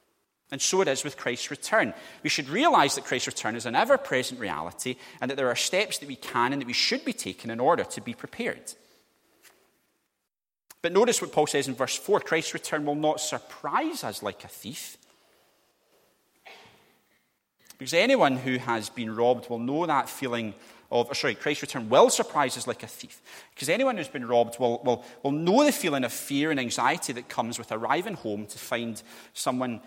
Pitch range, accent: 120-155 Hz, British